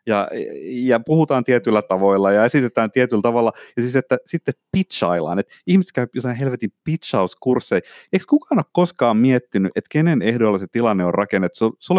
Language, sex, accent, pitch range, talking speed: Finnish, male, native, 110-165 Hz, 165 wpm